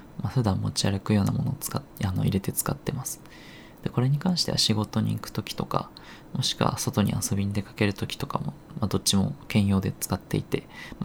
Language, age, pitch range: Japanese, 20-39, 105-140 Hz